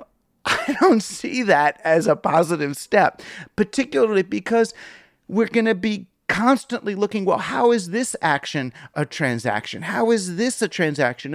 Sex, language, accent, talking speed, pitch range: male, English, American, 150 wpm, 140-195 Hz